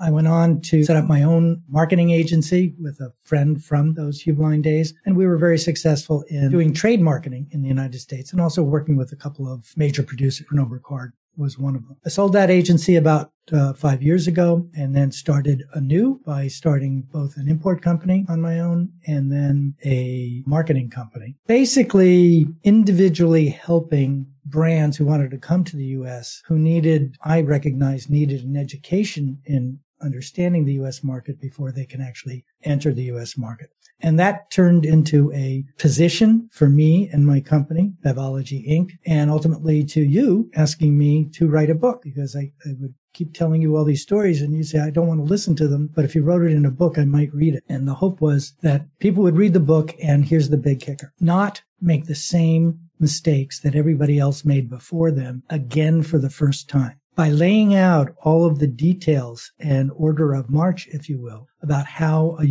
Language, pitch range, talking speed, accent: English, 140-165 Hz, 200 wpm, American